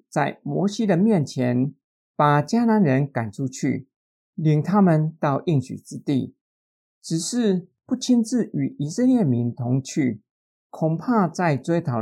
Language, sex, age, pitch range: Chinese, male, 50-69, 130-205 Hz